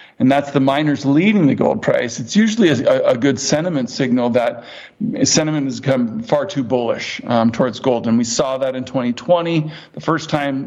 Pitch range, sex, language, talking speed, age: 125-150 Hz, male, English, 190 wpm, 50-69